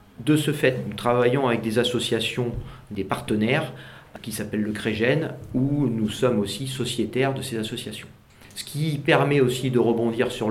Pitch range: 100-125 Hz